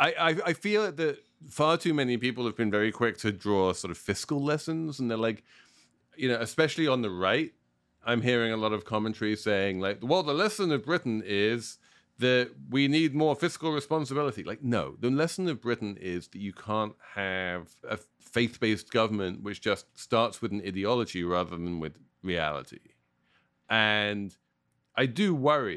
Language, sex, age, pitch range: English, male, 40-59, 90-120 Hz